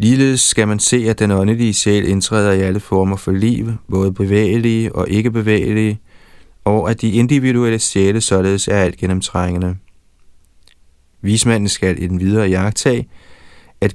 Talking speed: 150 wpm